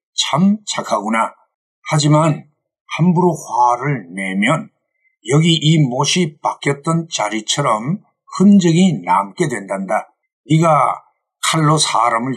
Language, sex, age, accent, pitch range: Korean, male, 50-69, native, 135-195 Hz